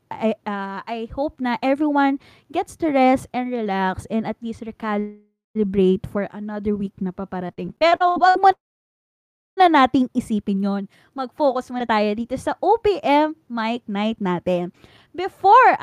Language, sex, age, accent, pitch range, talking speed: English, female, 20-39, Filipino, 215-310 Hz, 140 wpm